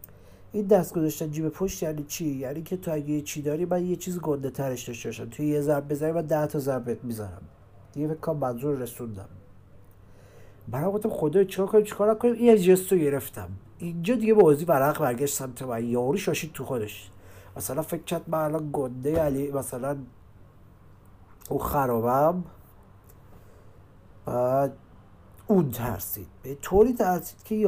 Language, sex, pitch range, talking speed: Persian, male, 105-160 Hz, 155 wpm